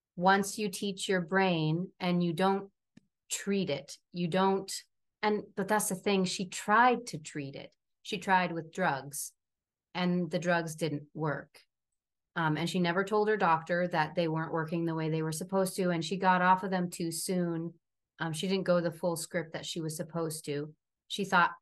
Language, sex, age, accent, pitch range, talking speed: English, female, 30-49, American, 155-185 Hz, 195 wpm